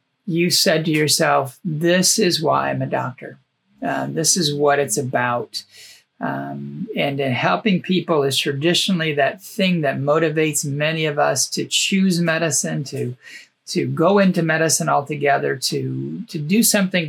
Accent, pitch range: American, 145-195 Hz